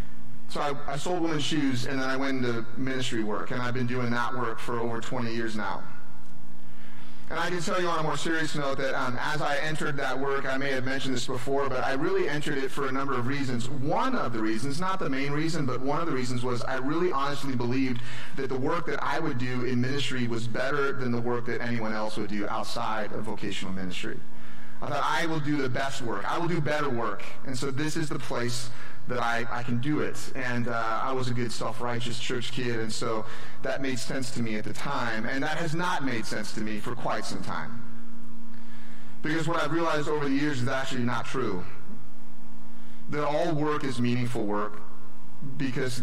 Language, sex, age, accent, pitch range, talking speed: English, male, 30-49, American, 115-140 Hz, 225 wpm